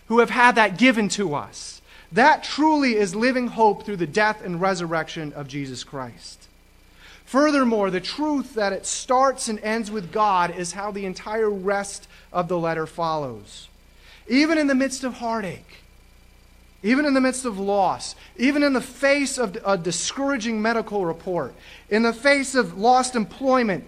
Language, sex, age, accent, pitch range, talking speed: English, male, 30-49, American, 160-240 Hz, 165 wpm